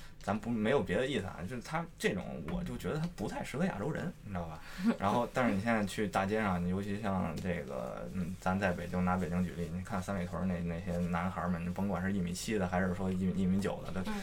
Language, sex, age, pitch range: Chinese, male, 20-39, 90-125 Hz